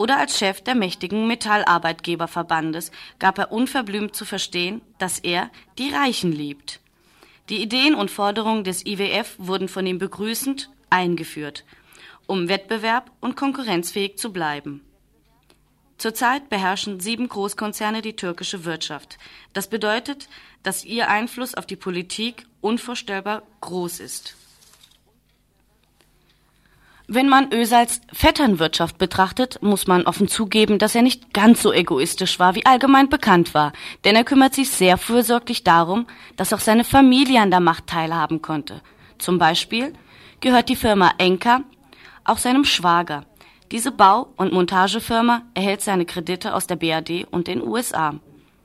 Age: 30-49